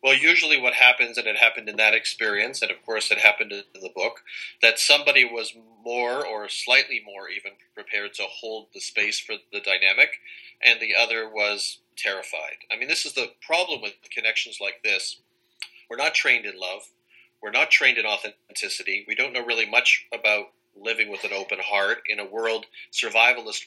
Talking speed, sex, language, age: 190 wpm, male, English, 30-49